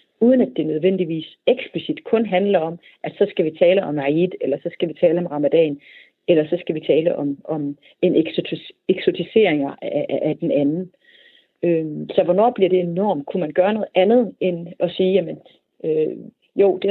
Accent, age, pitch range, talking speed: native, 30-49, 160-200 Hz, 185 wpm